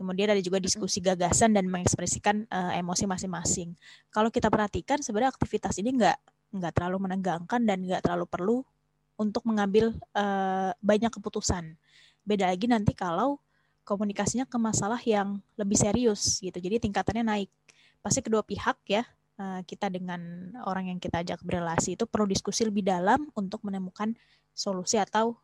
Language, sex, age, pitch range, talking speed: Indonesian, female, 20-39, 185-220 Hz, 150 wpm